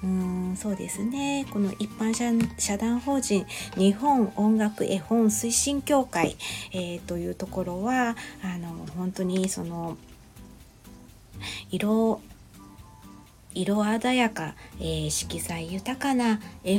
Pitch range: 180-230 Hz